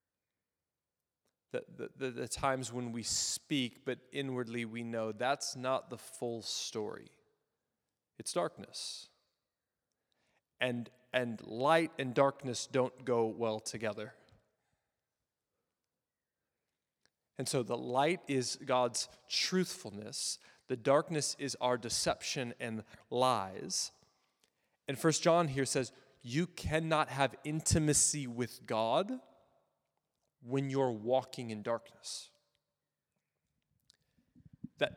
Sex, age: male, 20-39